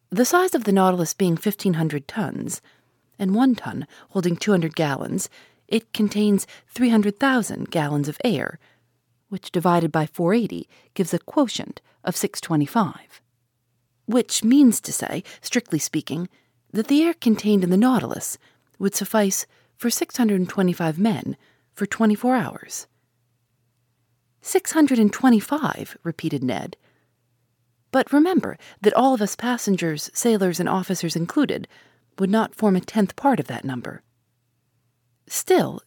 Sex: female